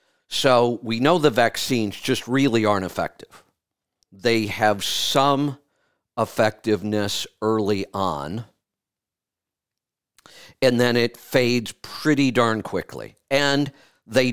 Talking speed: 100 wpm